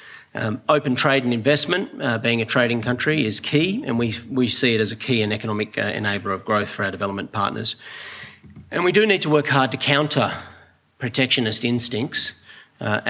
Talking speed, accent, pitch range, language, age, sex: 190 wpm, Australian, 105-130 Hz, English, 40-59, male